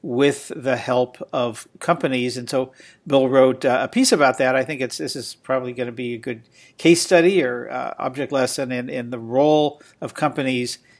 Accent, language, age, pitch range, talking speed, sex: American, English, 50-69, 120-145 Hz, 200 wpm, male